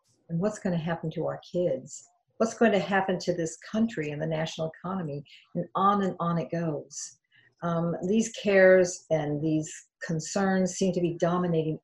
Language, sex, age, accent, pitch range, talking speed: English, female, 50-69, American, 165-195 Hz, 170 wpm